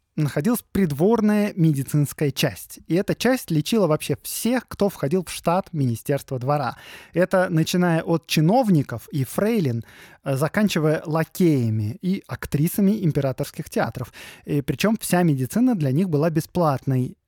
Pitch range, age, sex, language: 140-195 Hz, 20-39, male, Russian